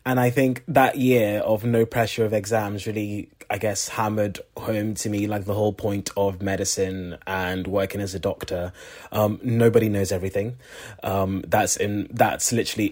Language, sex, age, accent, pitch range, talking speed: English, male, 20-39, British, 95-115 Hz, 170 wpm